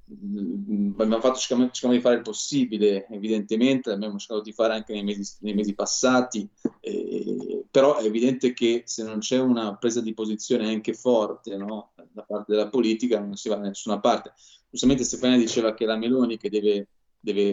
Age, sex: 20-39, male